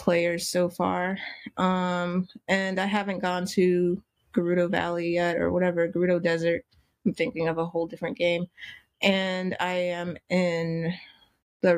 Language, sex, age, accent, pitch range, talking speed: English, female, 20-39, American, 175-195 Hz, 145 wpm